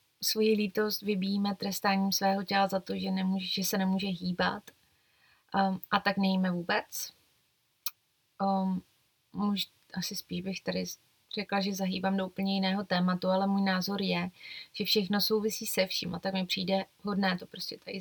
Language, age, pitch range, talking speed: Czech, 20-39, 185-210 Hz, 165 wpm